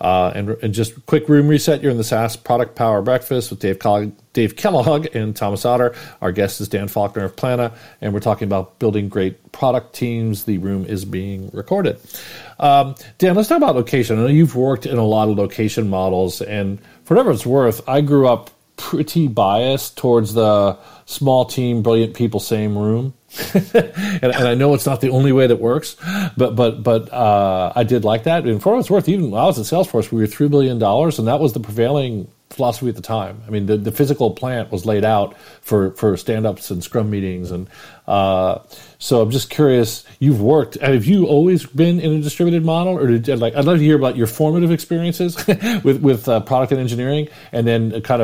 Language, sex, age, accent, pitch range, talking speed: English, male, 40-59, American, 105-145 Hz, 215 wpm